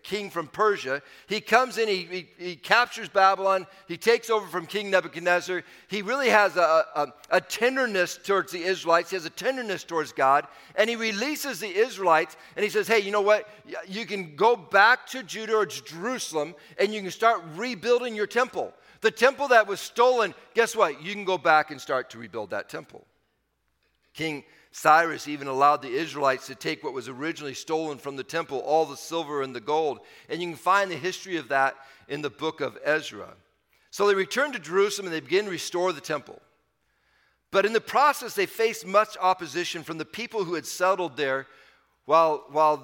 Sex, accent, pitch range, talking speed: male, American, 155-215 Hz, 195 wpm